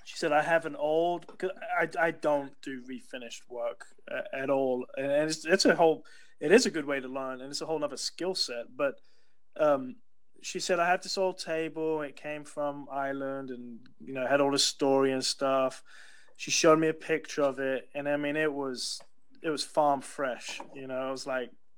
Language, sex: English, male